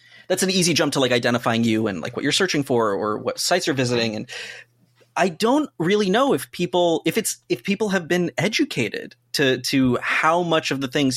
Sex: male